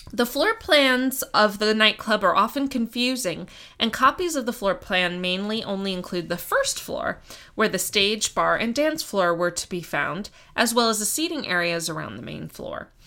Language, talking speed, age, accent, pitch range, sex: English, 195 wpm, 20-39, American, 175-235 Hz, female